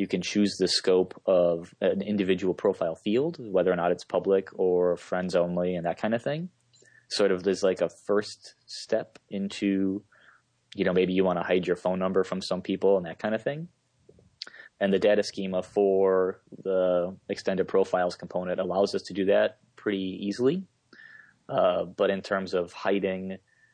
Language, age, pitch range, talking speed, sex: English, 20-39, 90-100 Hz, 180 wpm, male